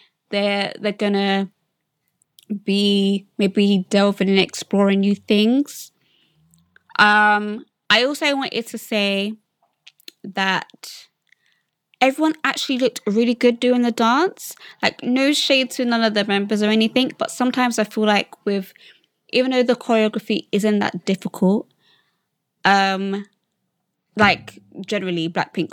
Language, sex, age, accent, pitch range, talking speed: English, female, 20-39, British, 195-230 Hz, 120 wpm